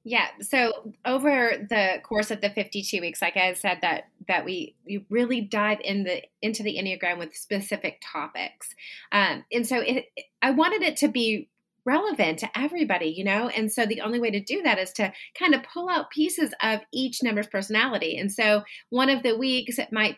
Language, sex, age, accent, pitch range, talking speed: English, female, 30-49, American, 195-245 Hz, 200 wpm